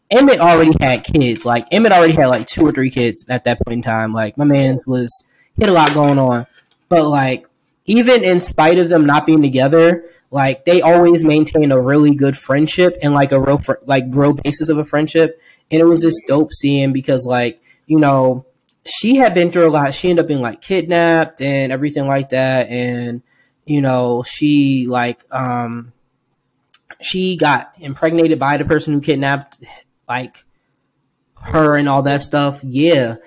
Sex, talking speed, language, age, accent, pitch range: male, 185 wpm, English, 10-29, American, 130-155 Hz